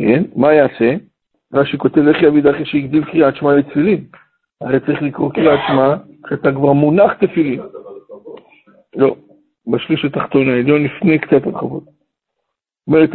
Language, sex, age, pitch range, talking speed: Hebrew, male, 60-79, 140-160 Hz, 130 wpm